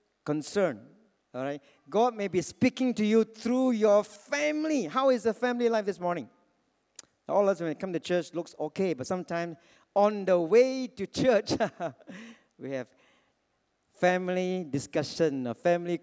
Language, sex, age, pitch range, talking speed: English, male, 50-69, 170-260 Hz, 155 wpm